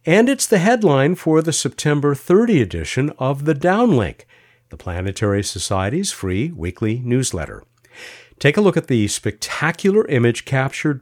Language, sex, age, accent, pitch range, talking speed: English, male, 50-69, American, 105-150 Hz, 140 wpm